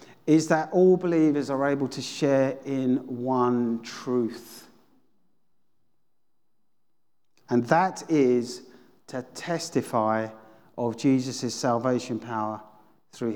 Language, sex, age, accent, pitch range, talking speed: English, male, 40-59, British, 125-185 Hz, 95 wpm